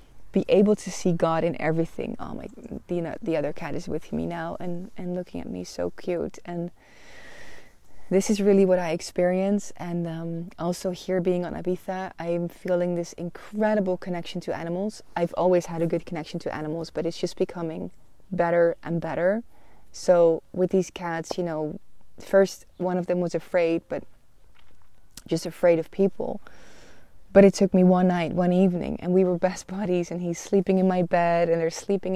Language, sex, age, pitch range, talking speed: English, female, 20-39, 165-185 Hz, 185 wpm